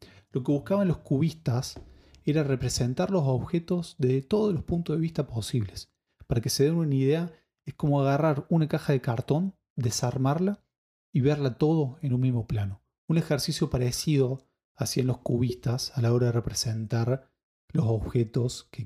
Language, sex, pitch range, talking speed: Spanish, male, 120-155 Hz, 160 wpm